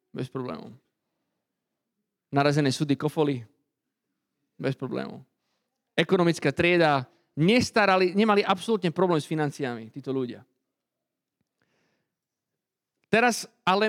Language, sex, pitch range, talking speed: Slovak, male, 150-200 Hz, 80 wpm